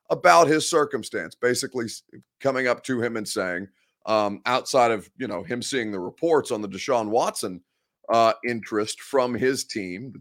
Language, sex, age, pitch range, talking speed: English, male, 30-49, 120-160 Hz, 170 wpm